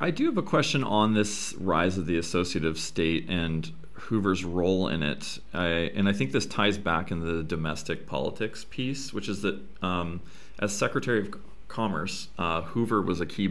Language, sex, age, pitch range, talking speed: English, male, 30-49, 80-95 Hz, 180 wpm